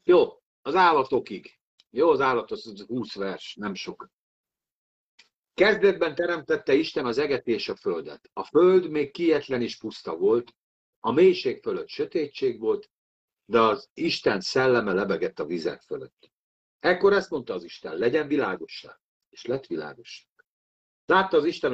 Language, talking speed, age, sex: Hungarian, 145 wpm, 50-69, male